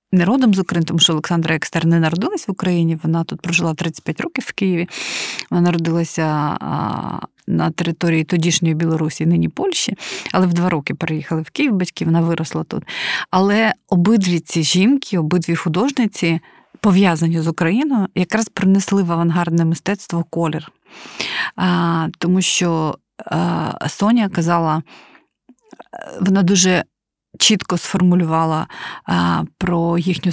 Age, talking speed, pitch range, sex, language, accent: 30-49, 125 wpm, 165-200 Hz, female, Ukrainian, native